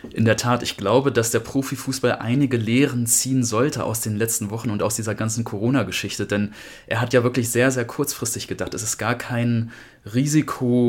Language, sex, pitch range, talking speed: German, male, 110-130 Hz, 195 wpm